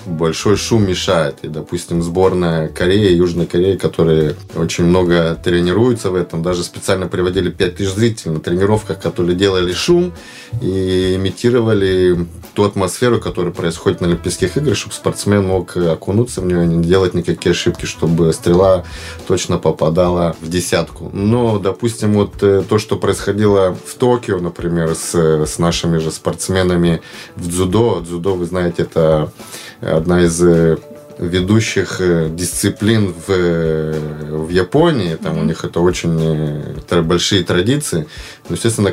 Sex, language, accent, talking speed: male, Russian, native, 135 wpm